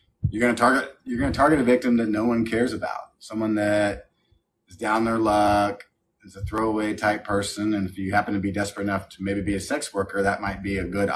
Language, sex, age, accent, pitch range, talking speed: English, male, 30-49, American, 95-110 Hz, 220 wpm